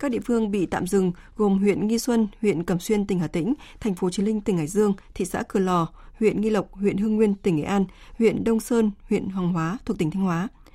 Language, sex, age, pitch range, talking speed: Vietnamese, female, 20-39, 185-230 Hz, 255 wpm